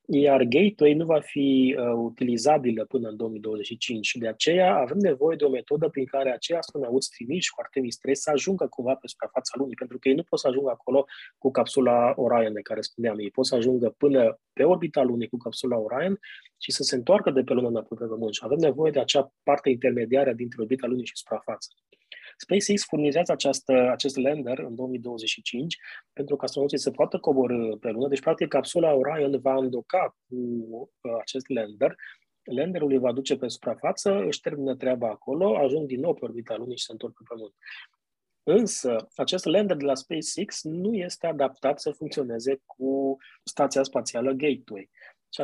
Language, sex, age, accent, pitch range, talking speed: Romanian, male, 20-39, native, 120-150 Hz, 190 wpm